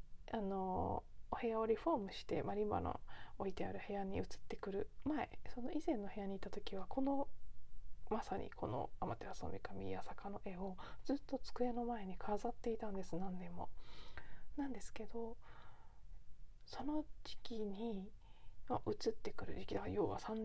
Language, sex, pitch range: Japanese, female, 195-255 Hz